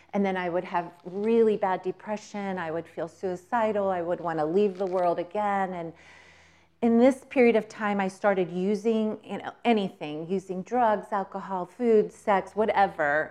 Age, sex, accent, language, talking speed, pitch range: 30-49, female, American, English, 170 wpm, 175-210 Hz